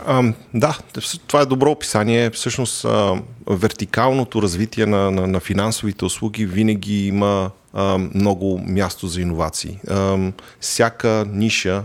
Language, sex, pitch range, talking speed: Bulgarian, male, 95-110 Hz, 120 wpm